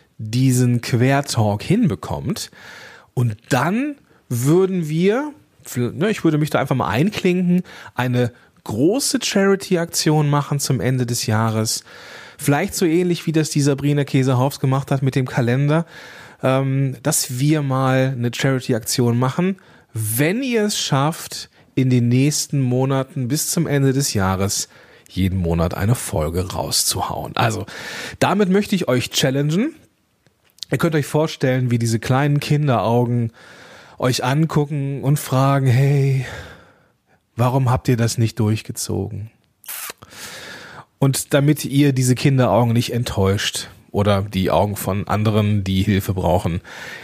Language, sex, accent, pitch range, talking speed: German, male, German, 110-150 Hz, 125 wpm